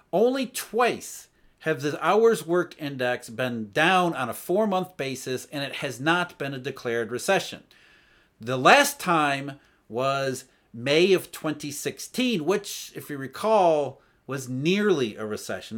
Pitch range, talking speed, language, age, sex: 130-180 Hz, 135 wpm, English, 40-59, male